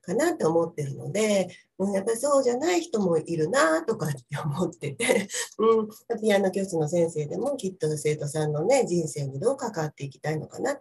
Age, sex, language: 40-59, female, Japanese